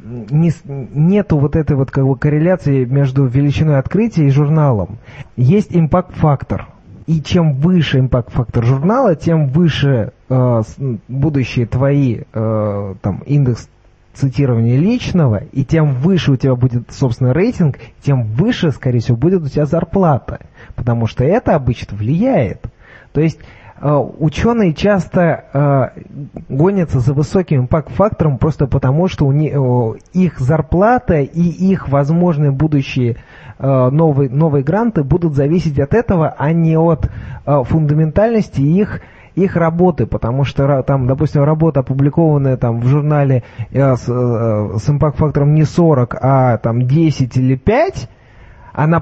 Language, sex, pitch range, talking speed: Russian, male, 125-160 Hz, 135 wpm